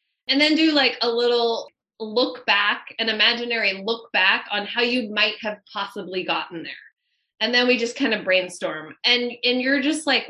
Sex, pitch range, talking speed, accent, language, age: female, 195-255 Hz, 185 wpm, American, English, 20-39